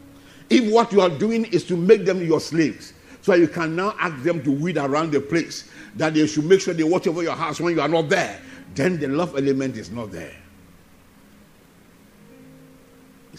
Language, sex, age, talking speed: English, male, 50-69, 200 wpm